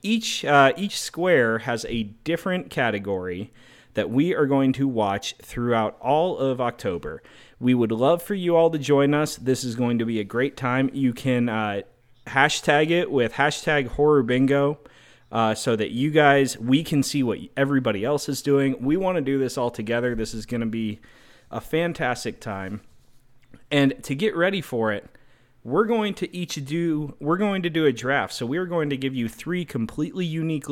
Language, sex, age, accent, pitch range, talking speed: English, male, 30-49, American, 120-155 Hz, 190 wpm